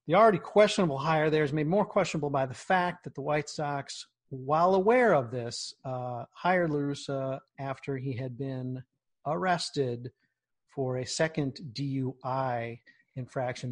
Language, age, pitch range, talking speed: English, 40-59, 125-160 Hz, 145 wpm